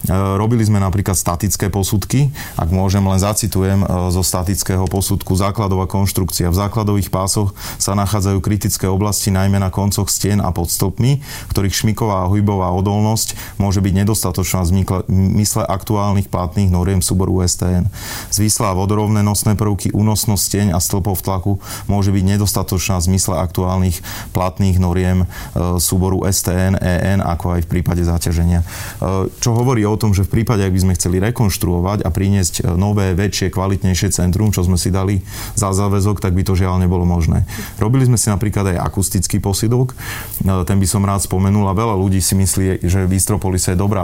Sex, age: male, 30-49